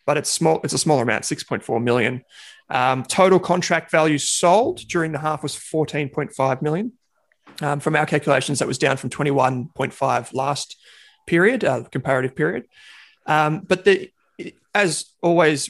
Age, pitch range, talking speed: 20-39, 120-150 Hz, 175 wpm